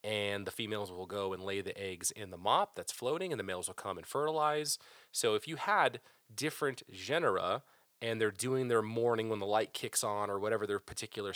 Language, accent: English, American